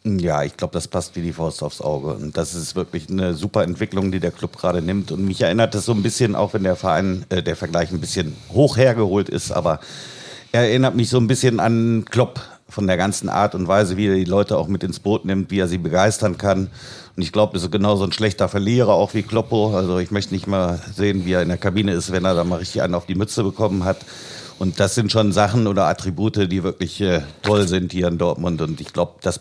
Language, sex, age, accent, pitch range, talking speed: German, male, 50-69, German, 90-105 Hz, 250 wpm